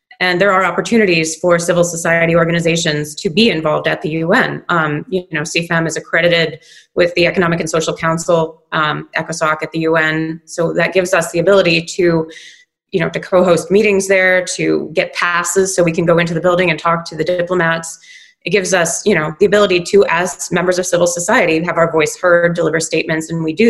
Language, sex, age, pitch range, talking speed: English, female, 20-39, 165-190 Hz, 205 wpm